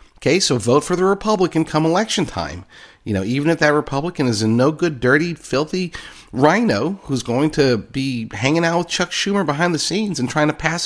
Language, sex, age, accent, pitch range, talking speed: English, male, 40-59, American, 105-155 Hz, 205 wpm